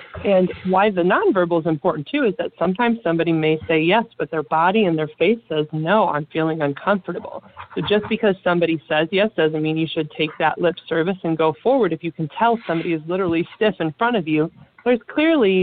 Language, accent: English, American